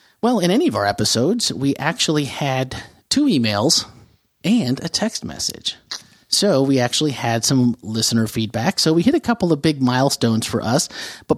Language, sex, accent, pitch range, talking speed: English, male, American, 115-165 Hz, 175 wpm